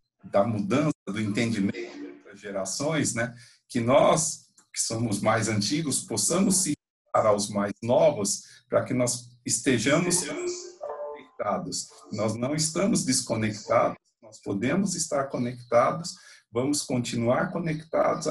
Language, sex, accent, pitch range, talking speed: Portuguese, male, Brazilian, 110-150 Hz, 115 wpm